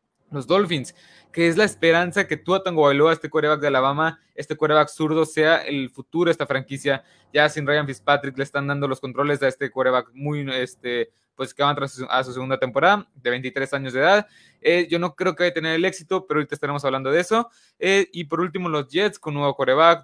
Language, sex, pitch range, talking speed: Spanish, male, 135-165 Hz, 230 wpm